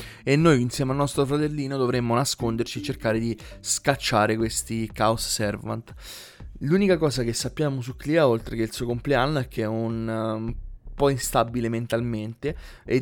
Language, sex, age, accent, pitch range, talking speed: Italian, male, 20-39, native, 110-130 Hz, 165 wpm